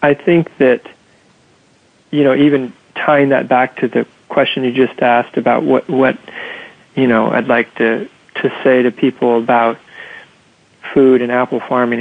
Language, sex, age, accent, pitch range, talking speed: English, male, 40-59, American, 115-135 Hz, 160 wpm